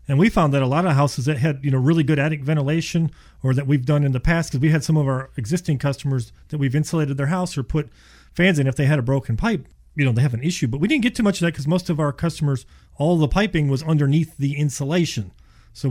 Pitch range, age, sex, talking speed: 135-170 Hz, 40-59, male, 275 wpm